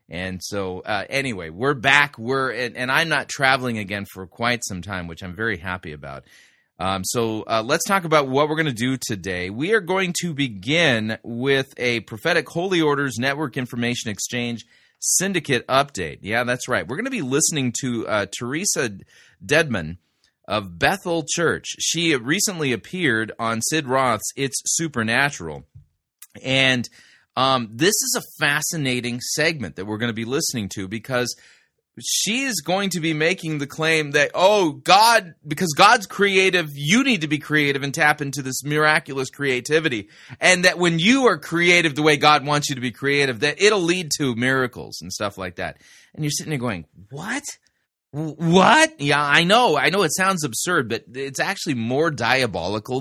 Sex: male